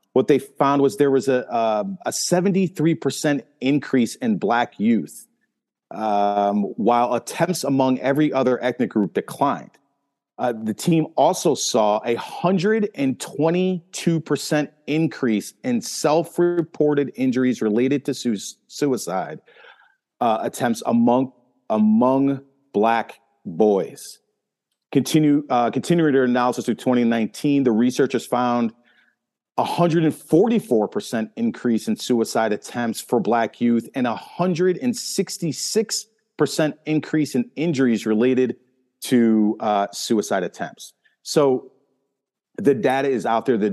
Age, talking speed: 40-59, 120 wpm